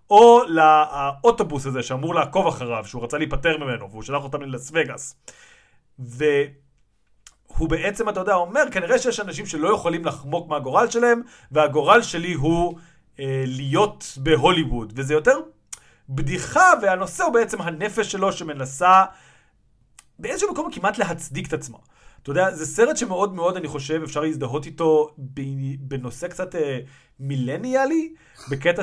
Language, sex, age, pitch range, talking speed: Hebrew, male, 30-49, 140-200 Hz, 135 wpm